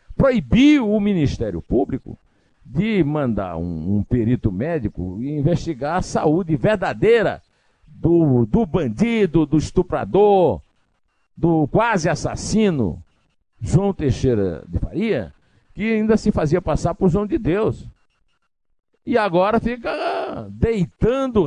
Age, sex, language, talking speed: 60-79, male, Portuguese, 110 wpm